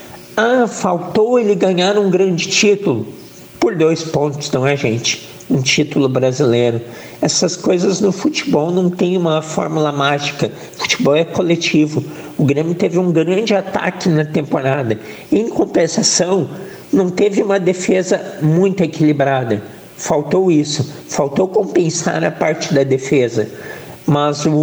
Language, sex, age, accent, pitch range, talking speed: Portuguese, male, 60-79, Brazilian, 155-205 Hz, 130 wpm